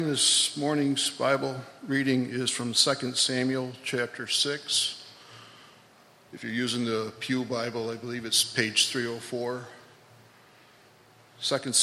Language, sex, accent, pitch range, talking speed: English, male, American, 115-135 Hz, 110 wpm